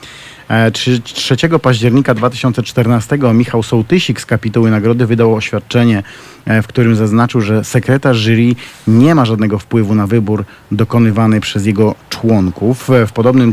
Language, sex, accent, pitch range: Polish, male, native, 110-125 Hz